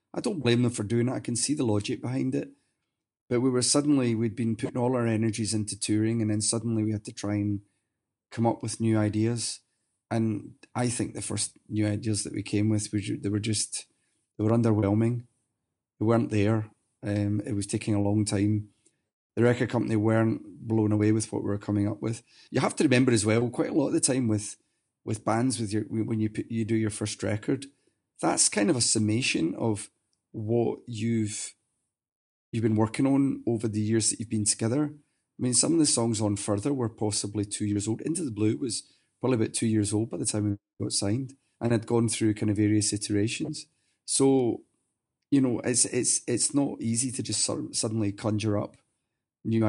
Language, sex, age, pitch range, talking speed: English, male, 30-49, 105-120 Hz, 210 wpm